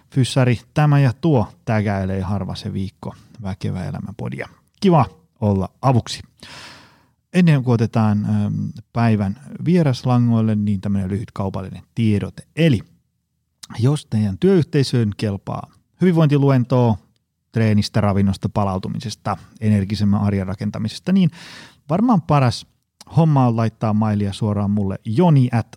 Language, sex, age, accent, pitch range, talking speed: Finnish, male, 30-49, native, 105-135 Hz, 105 wpm